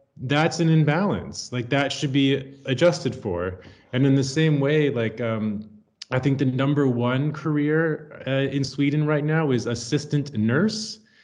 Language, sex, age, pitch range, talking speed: English, male, 30-49, 110-145 Hz, 160 wpm